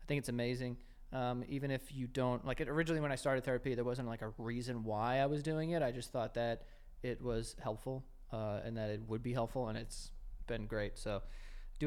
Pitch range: 125-155 Hz